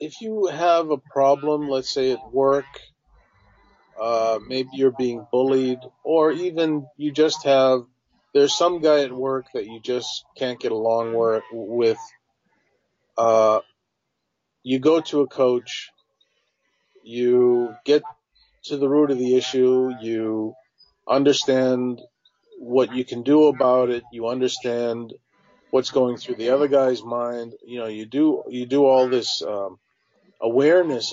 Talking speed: 140 wpm